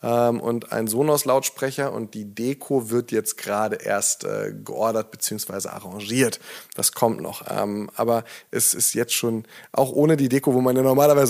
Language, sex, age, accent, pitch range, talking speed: German, male, 20-39, German, 120-145 Hz, 155 wpm